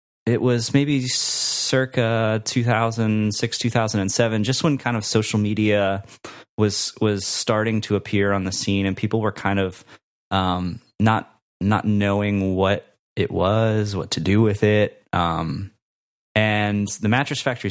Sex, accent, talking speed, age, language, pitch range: male, American, 140 wpm, 20-39, English, 95-115 Hz